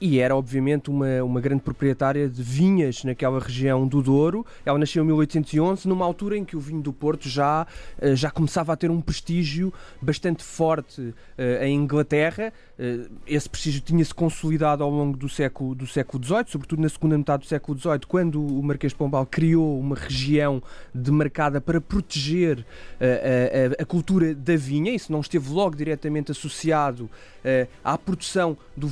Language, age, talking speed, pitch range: Portuguese, 20-39, 160 wpm, 145-180 Hz